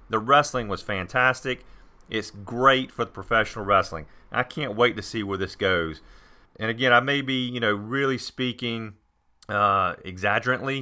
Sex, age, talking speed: male, 40-59, 160 wpm